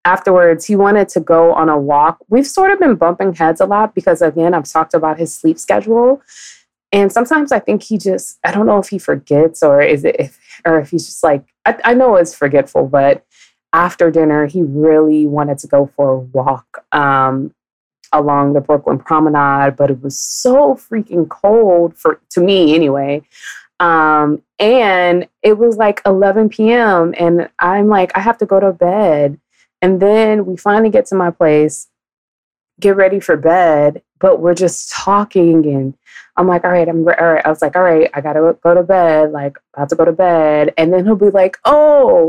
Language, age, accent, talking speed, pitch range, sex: English, 20-39, American, 200 wpm, 155-200 Hz, female